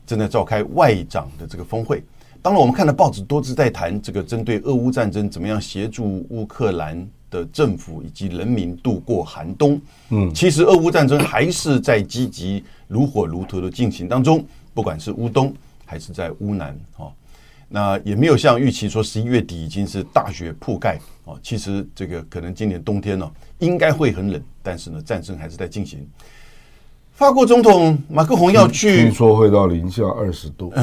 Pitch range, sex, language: 95-145 Hz, male, Chinese